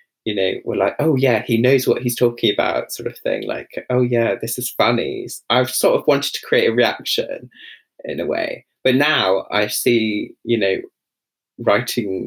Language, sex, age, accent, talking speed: English, male, 20-39, British, 190 wpm